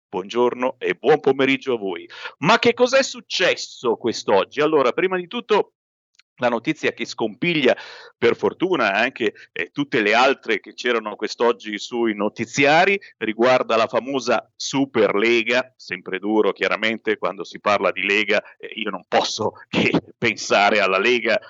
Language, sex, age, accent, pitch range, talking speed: Italian, male, 50-69, native, 130-205 Hz, 145 wpm